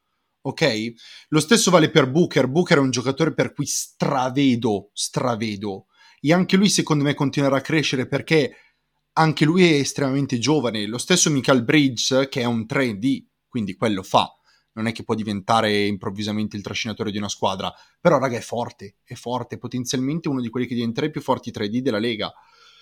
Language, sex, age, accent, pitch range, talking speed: Italian, male, 30-49, native, 120-160 Hz, 180 wpm